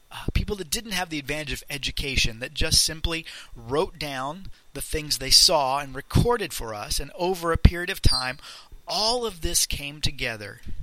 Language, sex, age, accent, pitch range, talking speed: English, male, 40-59, American, 120-155 Hz, 185 wpm